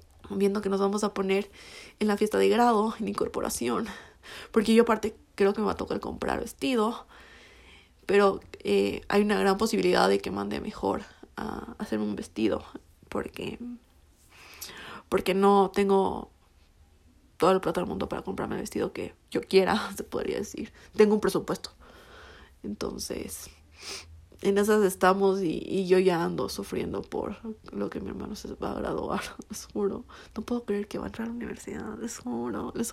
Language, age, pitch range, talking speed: Spanish, 20-39, 185-220 Hz, 175 wpm